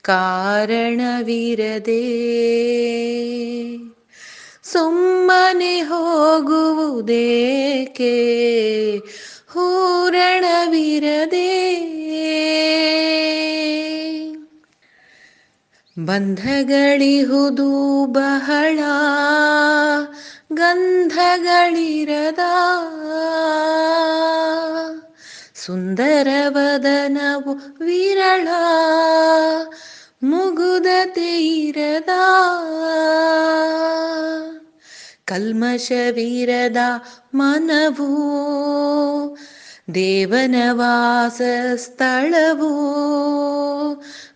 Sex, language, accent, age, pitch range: female, Kannada, native, 20-39, 240-325 Hz